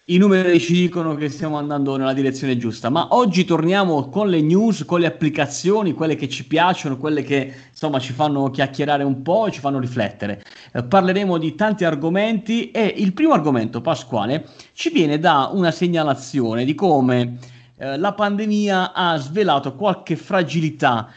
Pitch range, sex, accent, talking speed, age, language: 130-175 Hz, male, native, 165 wpm, 30-49, Italian